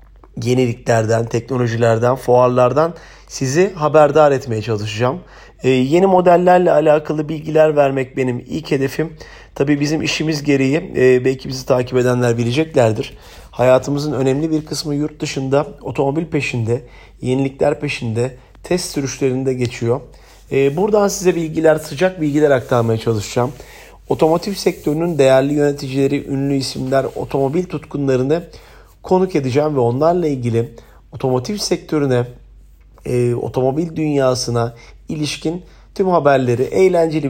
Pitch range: 125-155 Hz